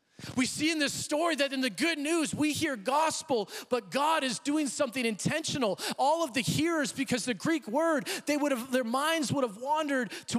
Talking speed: 210 wpm